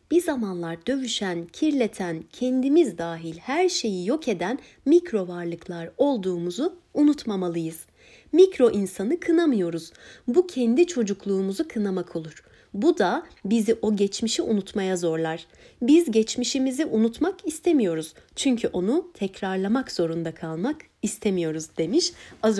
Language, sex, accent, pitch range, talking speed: Turkish, female, native, 185-295 Hz, 110 wpm